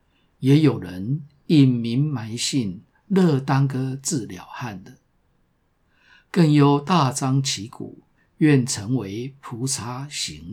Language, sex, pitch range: Chinese, male, 125-155 Hz